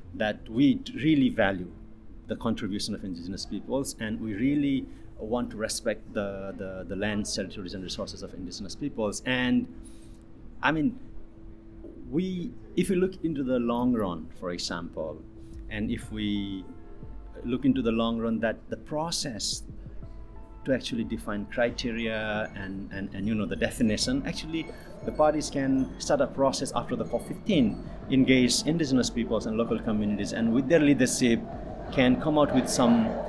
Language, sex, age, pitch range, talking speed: English, male, 50-69, 105-150 Hz, 155 wpm